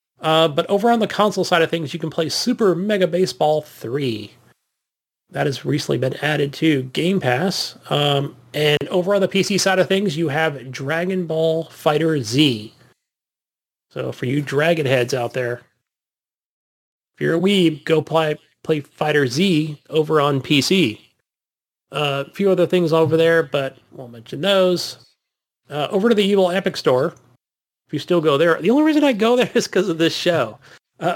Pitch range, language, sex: 140-185 Hz, English, male